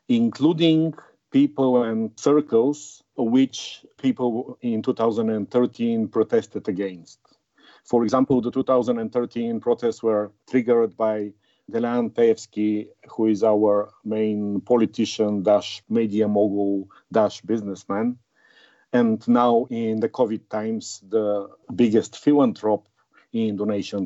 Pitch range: 105-125 Hz